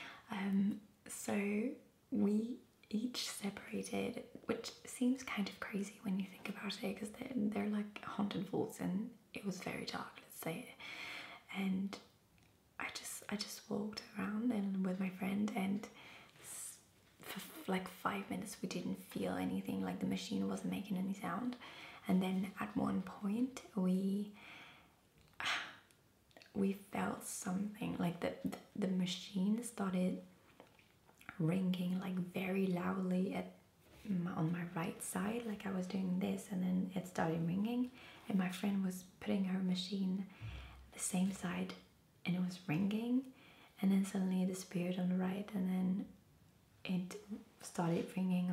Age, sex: 20-39, female